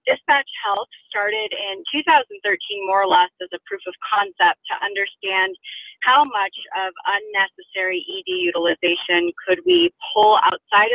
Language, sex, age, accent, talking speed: English, female, 30-49, American, 135 wpm